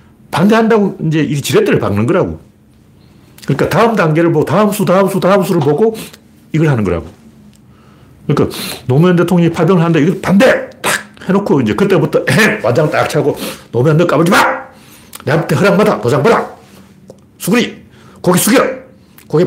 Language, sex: Korean, male